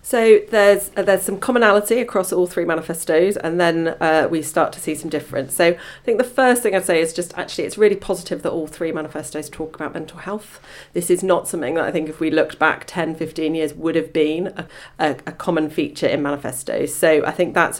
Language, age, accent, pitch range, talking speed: English, 40-59, British, 145-180 Hz, 235 wpm